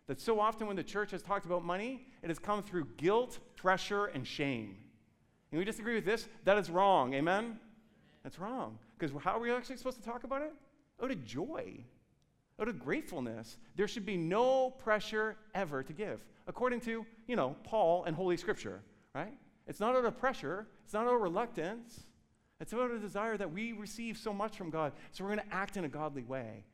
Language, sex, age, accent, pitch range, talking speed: English, male, 40-59, American, 135-210 Hz, 205 wpm